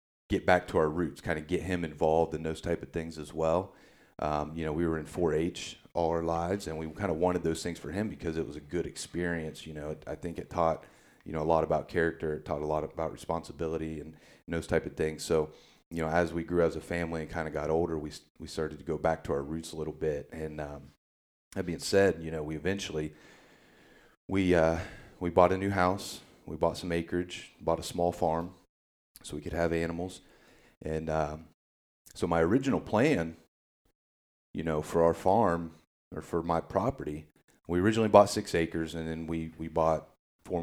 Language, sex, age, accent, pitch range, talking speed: English, male, 30-49, American, 75-85 Hz, 215 wpm